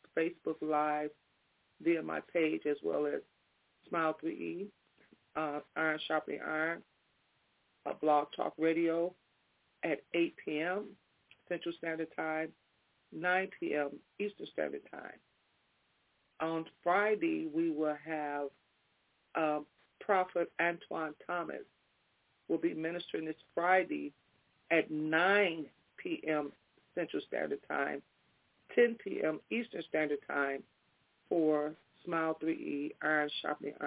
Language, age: English, 40-59